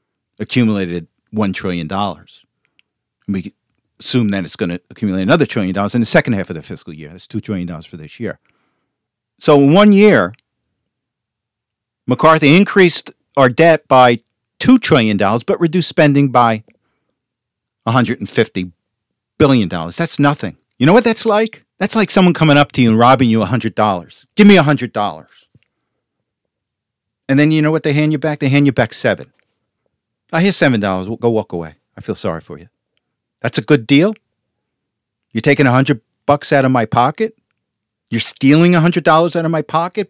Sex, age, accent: male, 50-69, American